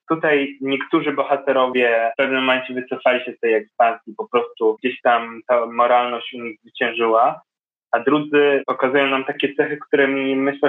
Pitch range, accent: 120-145 Hz, native